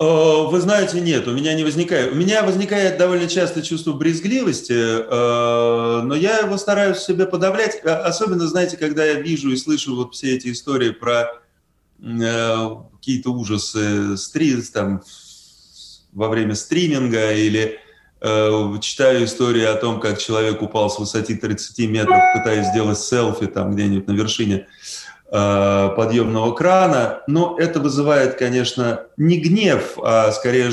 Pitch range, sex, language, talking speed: 110-155 Hz, male, Russian, 130 wpm